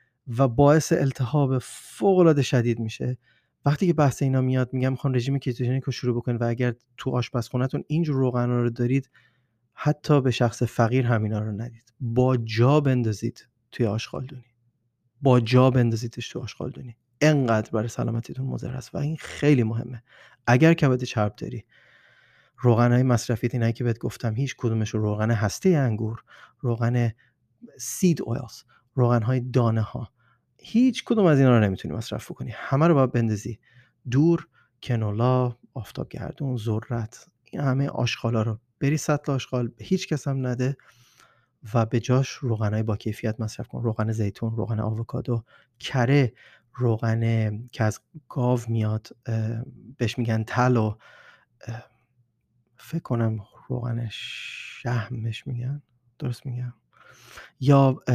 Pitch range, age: 115-130 Hz, 30-49